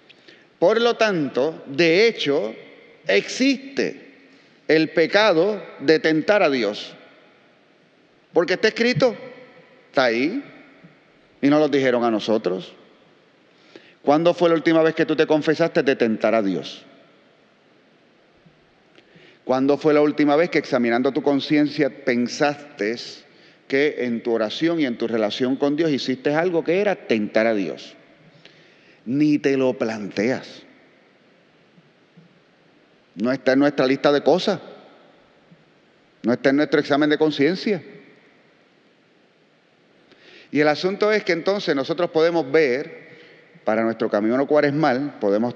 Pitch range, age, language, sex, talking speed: 130-165 Hz, 40-59, Spanish, male, 130 wpm